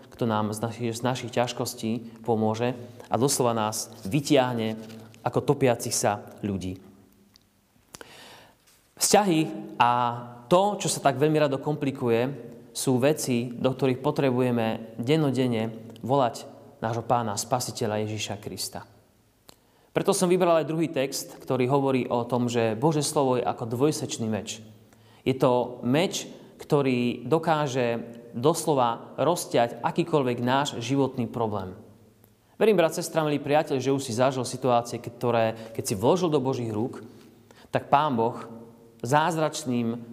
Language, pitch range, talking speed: Slovak, 110-140 Hz, 130 wpm